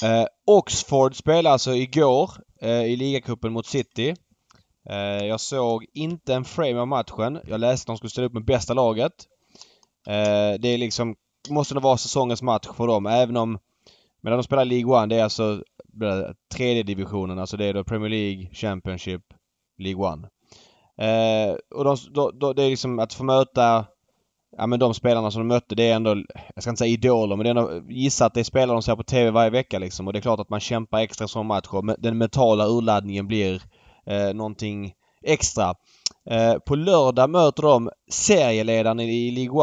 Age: 20-39